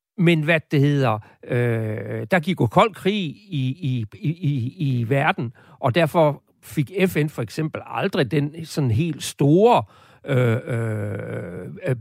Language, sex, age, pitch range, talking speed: Danish, male, 60-79, 120-165 Hz, 145 wpm